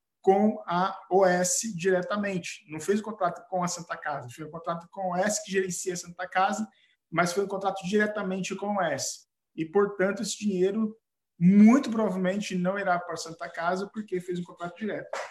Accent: Brazilian